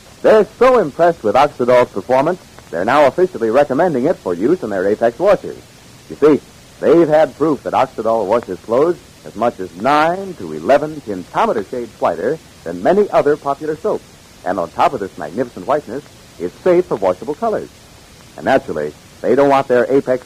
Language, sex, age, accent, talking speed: English, male, 60-79, American, 175 wpm